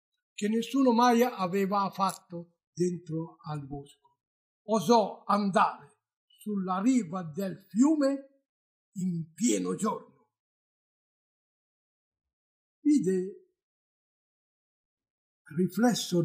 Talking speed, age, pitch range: 70 wpm, 60-79, 170-245 Hz